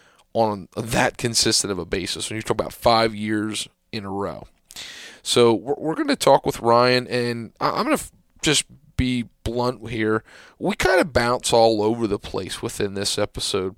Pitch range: 105-125 Hz